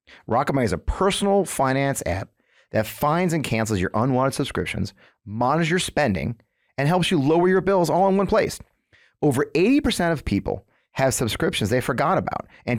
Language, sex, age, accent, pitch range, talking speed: English, male, 30-49, American, 110-185 Hz, 175 wpm